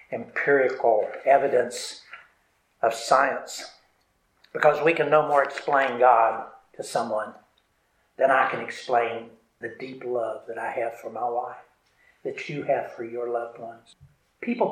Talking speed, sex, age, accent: 140 wpm, male, 60-79, American